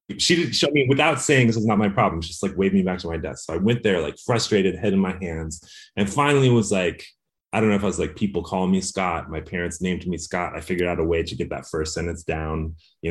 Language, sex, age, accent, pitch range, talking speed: English, male, 30-49, American, 80-110 Hz, 280 wpm